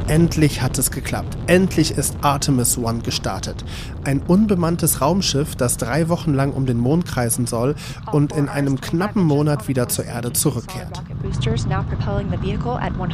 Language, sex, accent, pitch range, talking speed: German, male, German, 125-145 Hz, 135 wpm